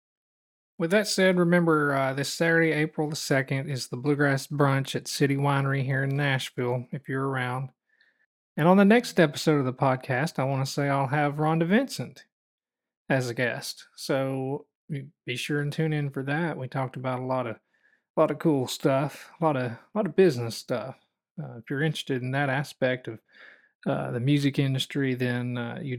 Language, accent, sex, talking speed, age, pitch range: English, American, male, 195 wpm, 40-59, 130-160 Hz